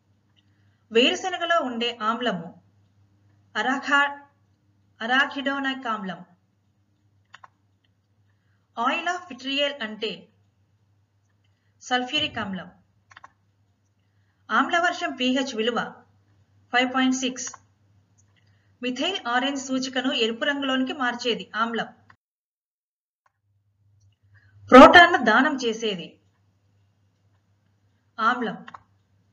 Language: Telugu